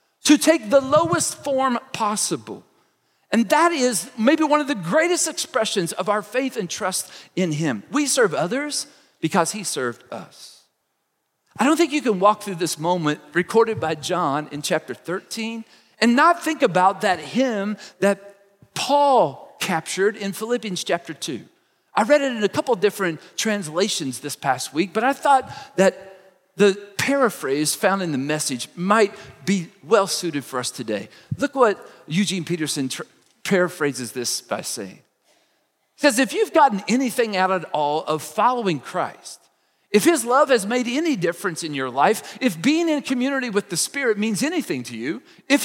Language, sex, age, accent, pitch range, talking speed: English, male, 40-59, American, 180-280 Hz, 165 wpm